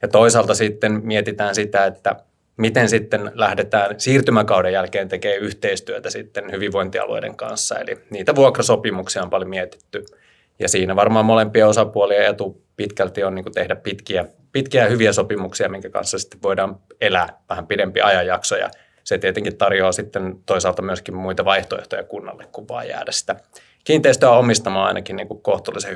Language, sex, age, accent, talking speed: Finnish, male, 20-39, native, 140 wpm